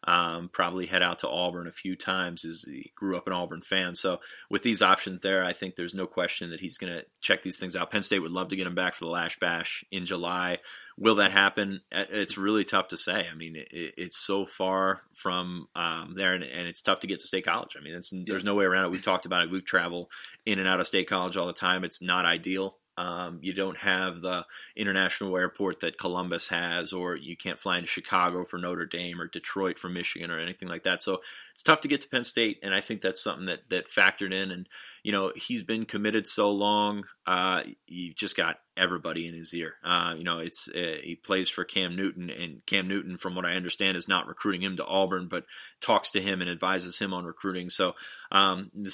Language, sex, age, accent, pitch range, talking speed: English, male, 30-49, American, 85-95 Hz, 235 wpm